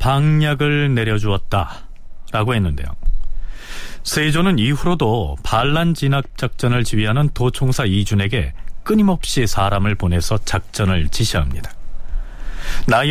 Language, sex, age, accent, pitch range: Korean, male, 40-59, native, 95-145 Hz